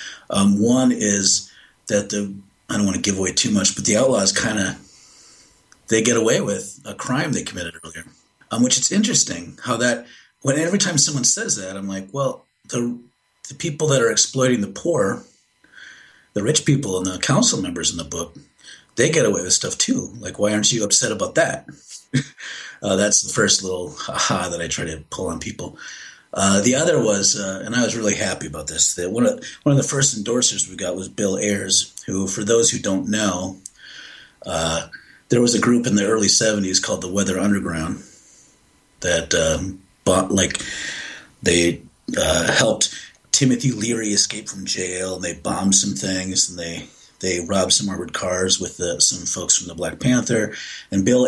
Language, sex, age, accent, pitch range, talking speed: English, male, 40-59, American, 95-120 Hz, 190 wpm